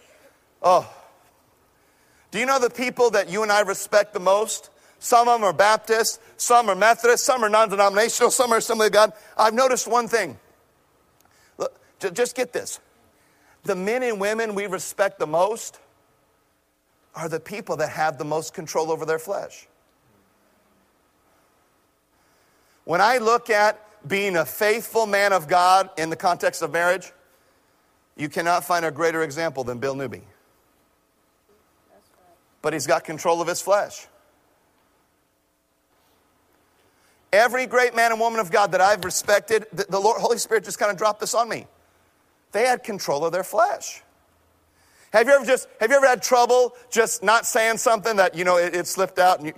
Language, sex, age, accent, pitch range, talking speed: English, male, 50-69, American, 175-225 Hz, 165 wpm